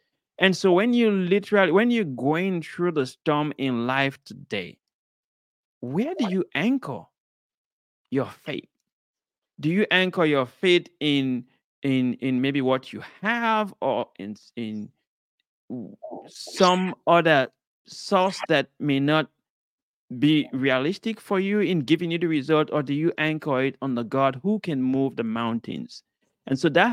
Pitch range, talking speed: 130-180 Hz, 145 wpm